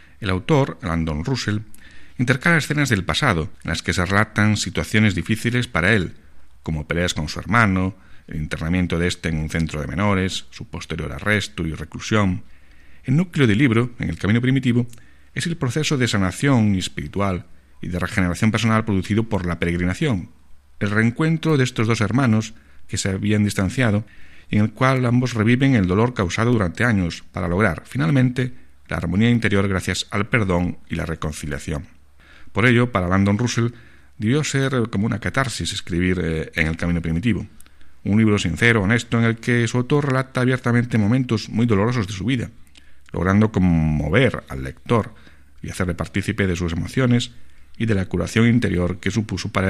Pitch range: 85-115 Hz